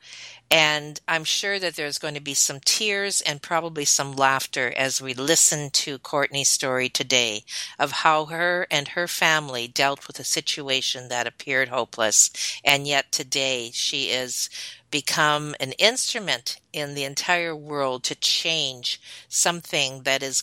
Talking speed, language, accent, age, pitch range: 150 wpm, English, American, 50-69, 130-165 Hz